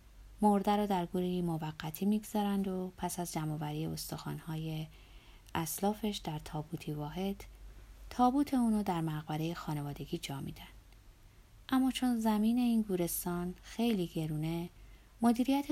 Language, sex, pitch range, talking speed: Persian, female, 160-210 Hz, 115 wpm